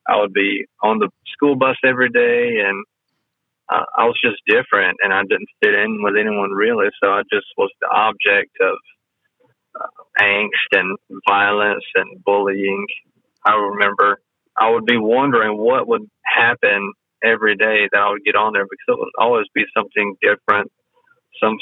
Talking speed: 170 wpm